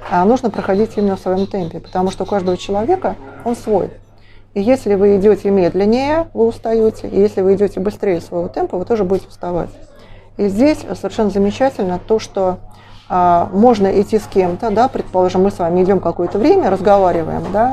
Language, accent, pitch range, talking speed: Russian, native, 170-215 Hz, 165 wpm